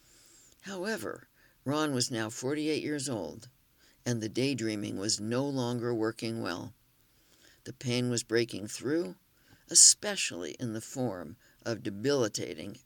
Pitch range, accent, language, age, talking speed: 115-140 Hz, American, English, 60-79, 120 wpm